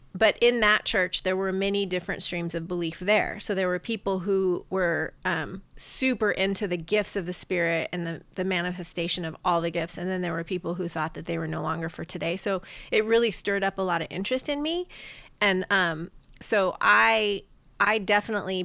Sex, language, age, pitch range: female, English, 30-49, 170-195 Hz